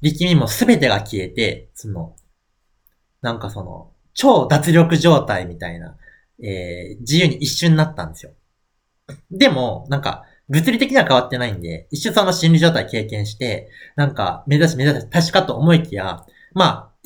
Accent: native